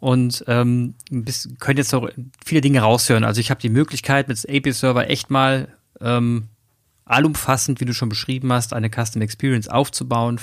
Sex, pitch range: male, 115-130 Hz